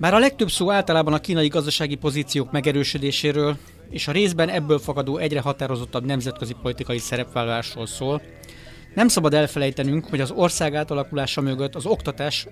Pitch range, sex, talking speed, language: 125-165 Hz, male, 150 wpm, Hungarian